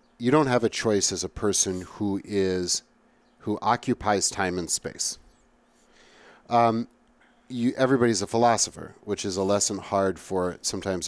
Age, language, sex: 40-59, English, male